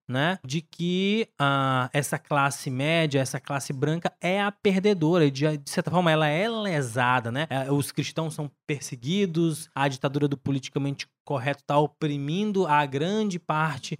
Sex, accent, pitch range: male, Brazilian, 140-175 Hz